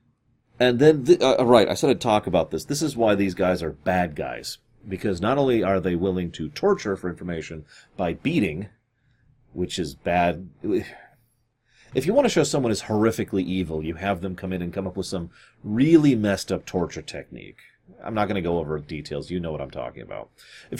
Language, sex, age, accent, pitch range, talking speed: English, male, 30-49, American, 90-120 Hz, 205 wpm